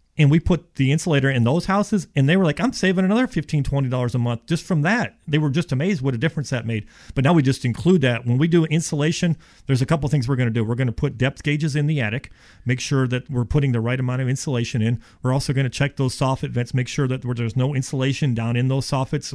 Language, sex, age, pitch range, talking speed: English, male, 40-59, 120-150 Hz, 270 wpm